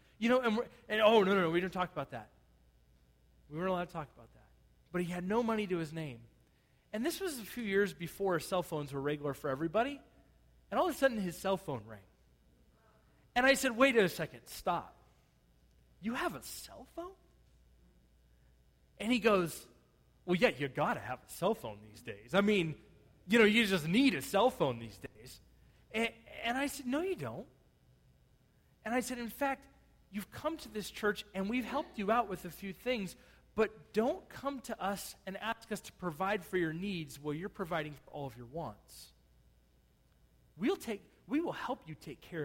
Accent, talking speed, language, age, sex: American, 205 wpm, English, 30-49, male